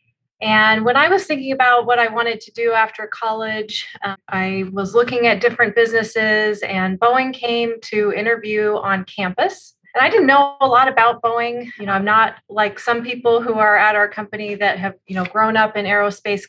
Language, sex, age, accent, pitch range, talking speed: English, female, 30-49, American, 195-230 Hz, 200 wpm